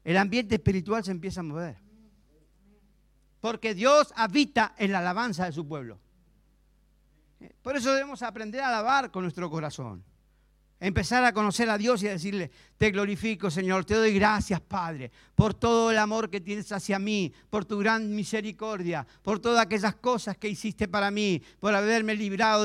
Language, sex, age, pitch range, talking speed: Spanish, male, 50-69, 135-215 Hz, 165 wpm